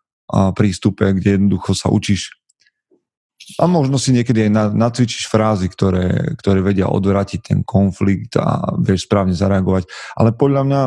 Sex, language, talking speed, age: male, Slovak, 145 wpm, 30-49